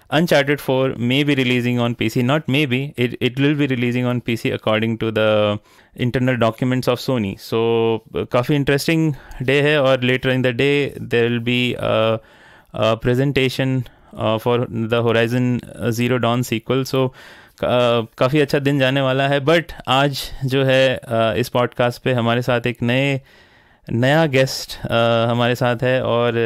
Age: 20-39